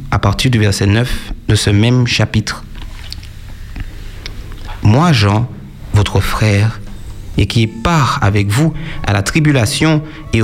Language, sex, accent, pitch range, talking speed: French, male, French, 105-155 Hz, 125 wpm